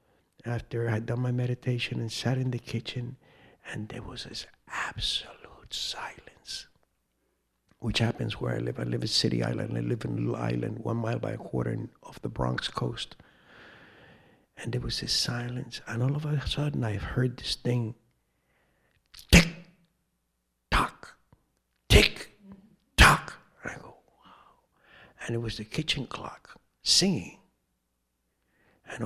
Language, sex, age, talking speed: English, male, 60-79, 150 wpm